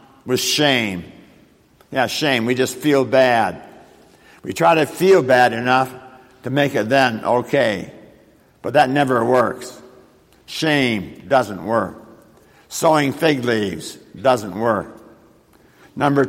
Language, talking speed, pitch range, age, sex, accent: English, 120 wpm, 125-150 Hz, 60-79, male, American